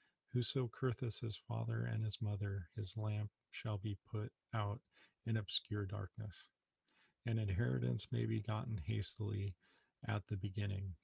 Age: 40-59